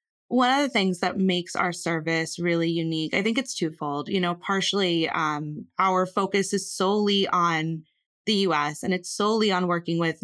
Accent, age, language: American, 20-39, English